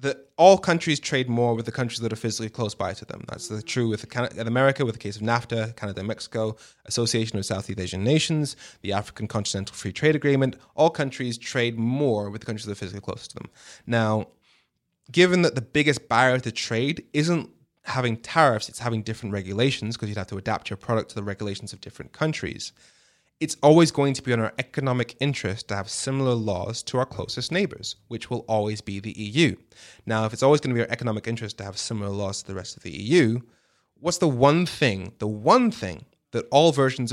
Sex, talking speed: male, 215 wpm